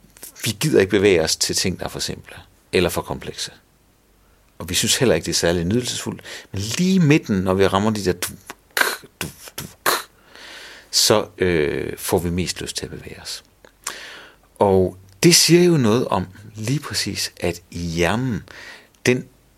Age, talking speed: 60-79, 165 wpm